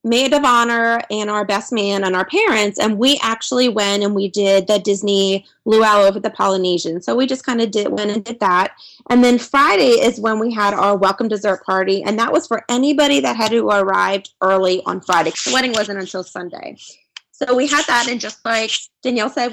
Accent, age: American, 20-39